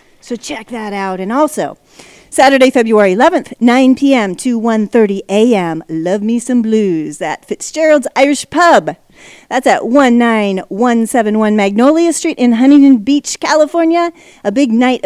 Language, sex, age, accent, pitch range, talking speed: English, female, 40-59, American, 205-275 Hz, 135 wpm